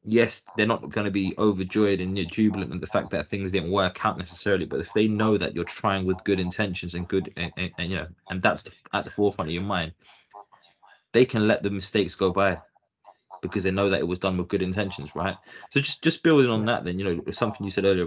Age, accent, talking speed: 20-39, British, 245 wpm